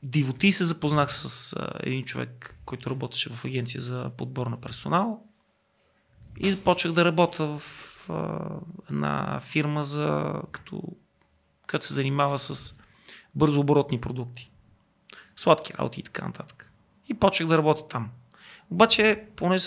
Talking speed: 125 wpm